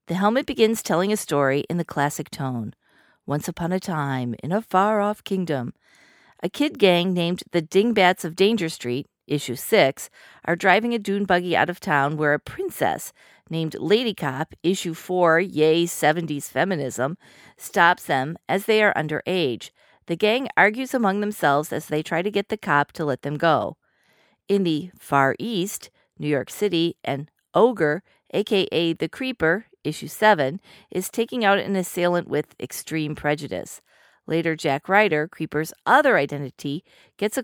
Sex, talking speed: female, 160 wpm